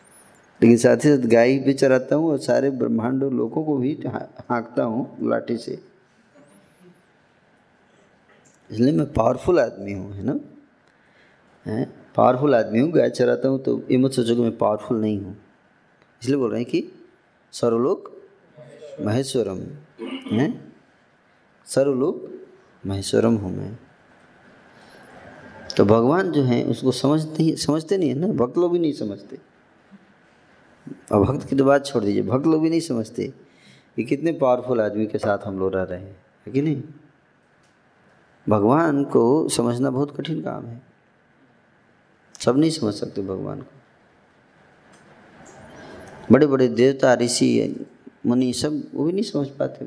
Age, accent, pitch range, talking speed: 20-39, native, 115-150 Hz, 135 wpm